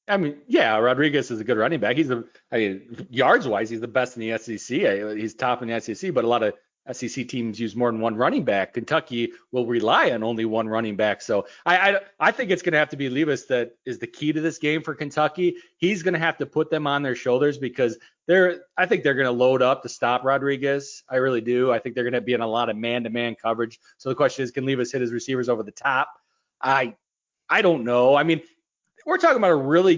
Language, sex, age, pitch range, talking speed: English, male, 30-49, 120-155 Hz, 255 wpm